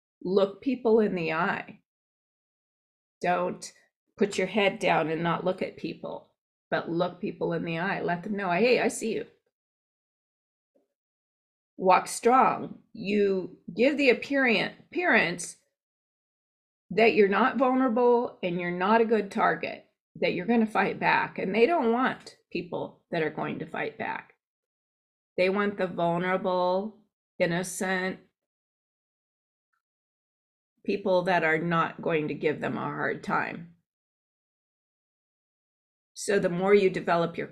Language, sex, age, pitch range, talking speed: English, female, 30-49, 180-230 Hz, 130 wpm